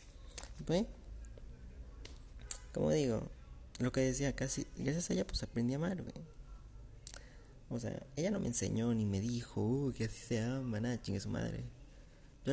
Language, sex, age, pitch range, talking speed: Spanish, male, 30-49, 105-135 Hz, 160 wpm